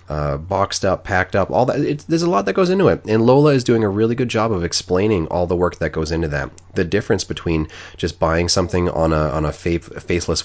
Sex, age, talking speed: male, 30-49, 255 wpm